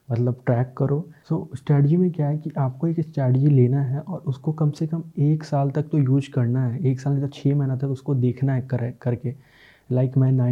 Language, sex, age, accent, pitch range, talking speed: Hindi, male, 20-39, native, 125-140 Hz, 220 wpm